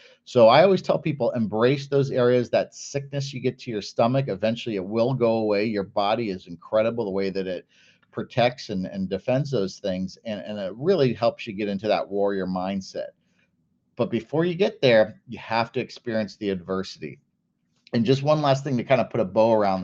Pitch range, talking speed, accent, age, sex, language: 105-130 Hz, 205 wpm, American, 50-69, male, English